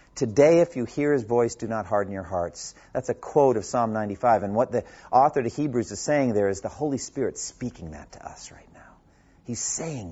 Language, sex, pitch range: English, male, 95-130 Hz